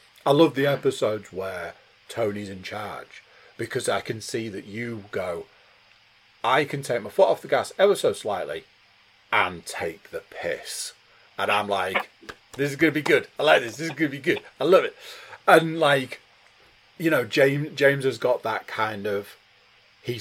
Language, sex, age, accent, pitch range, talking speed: English, male, 30-49, British, 100-160 Hz, 185 wpm